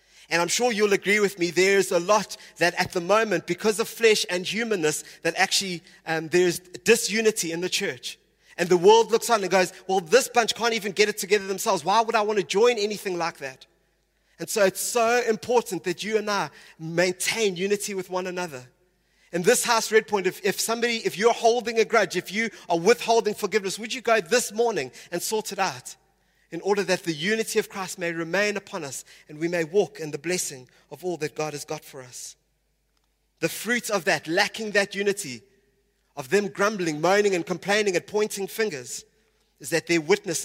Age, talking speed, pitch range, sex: 30-49, 205 wpm, 165-210 Hz, male